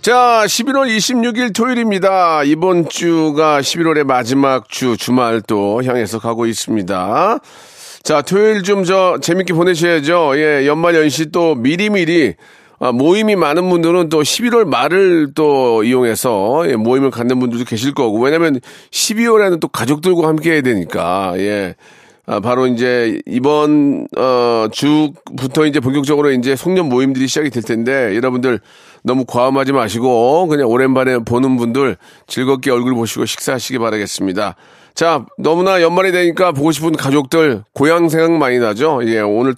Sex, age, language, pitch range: male, 40-59, Korean, 125-170 Hz